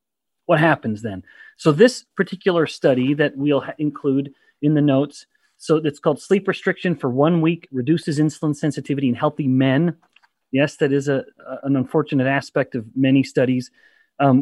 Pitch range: 130-165 Hz